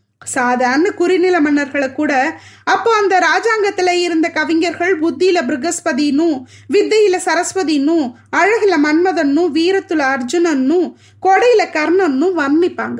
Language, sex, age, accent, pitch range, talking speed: Tamil, female, 20-39, native, 275-360 Hz, 90 wpm